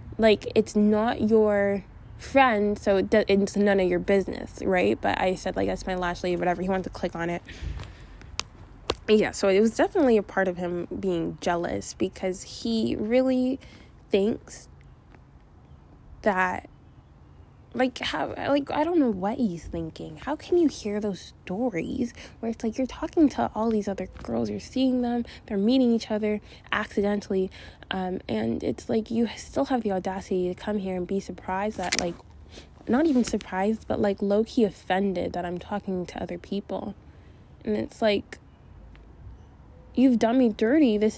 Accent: American